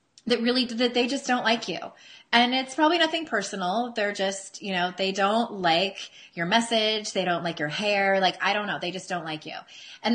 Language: English